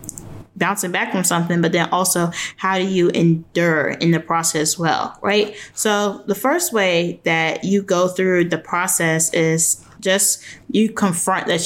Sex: female